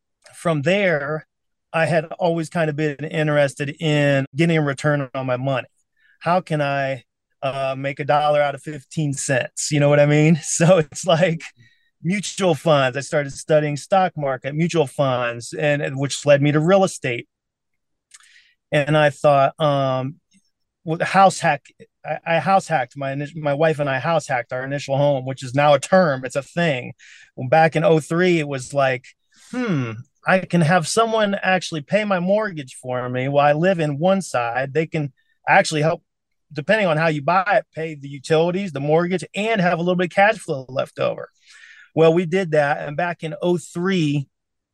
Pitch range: 140-170 Hz